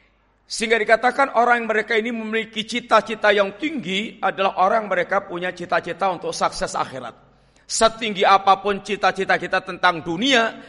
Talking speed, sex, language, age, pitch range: 130 wpm, male, Indonesian, 50-69, 185-225 Hz